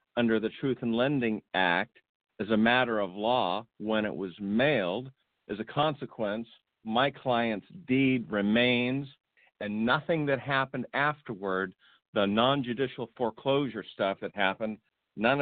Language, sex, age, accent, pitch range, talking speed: English, male, 50-69, American, 105-130 Hz, 130 wpm